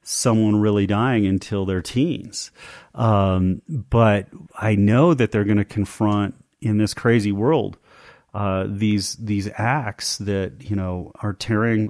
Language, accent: English, American